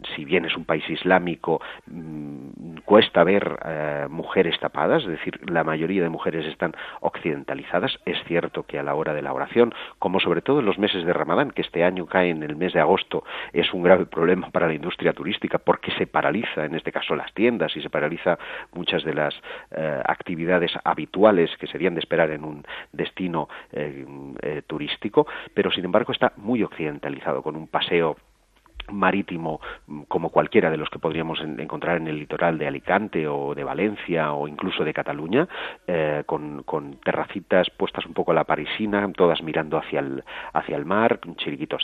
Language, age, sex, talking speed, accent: English, 40-59, male, 180 wpm, Spanish